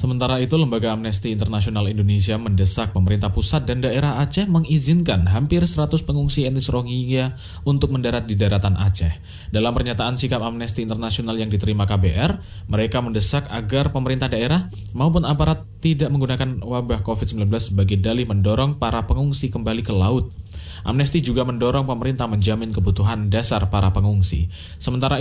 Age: 20-39